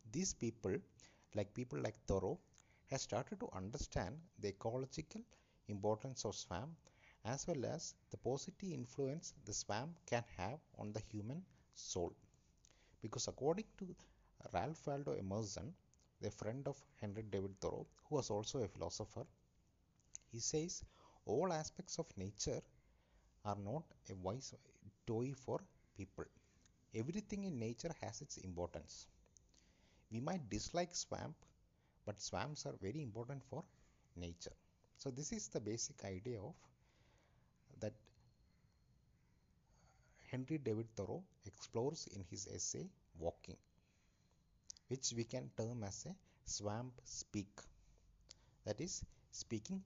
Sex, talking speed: male, 125 wpm